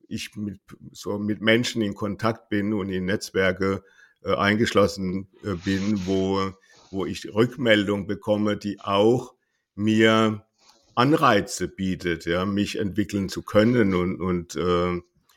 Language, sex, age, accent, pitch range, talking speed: German, male, 60-79, German, 100-125 Hz, 125 wpm